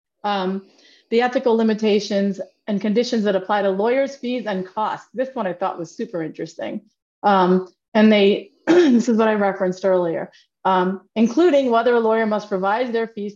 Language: English